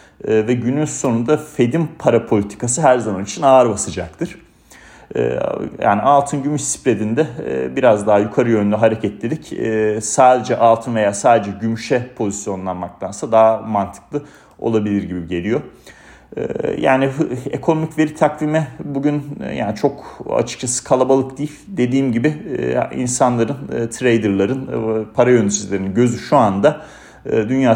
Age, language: 40-59, Turkish